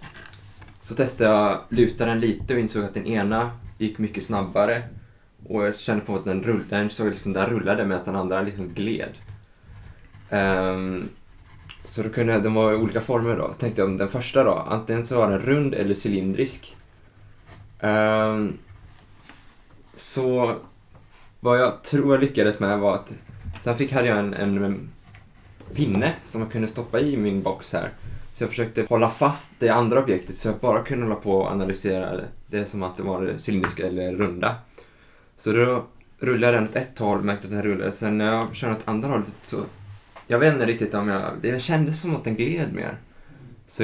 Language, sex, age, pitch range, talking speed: Swedish, male, 20-39, 100-120 Hz, 190 wpm